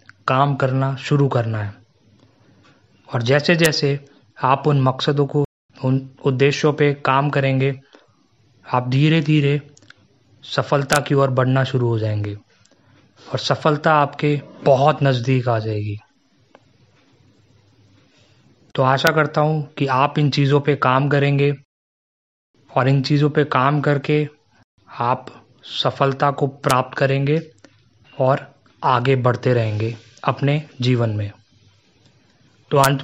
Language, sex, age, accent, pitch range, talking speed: Hindi, male, 30-49, native, 120-145 Hz, 120 wpm